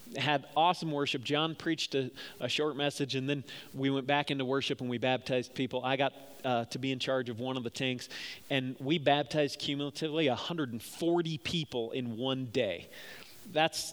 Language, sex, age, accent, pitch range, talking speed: English, male, 40-59, American, 130-175 Hz, 180 wpm